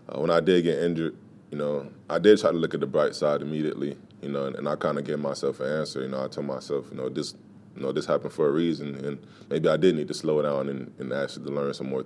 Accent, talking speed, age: American, 295 wpm, 20-39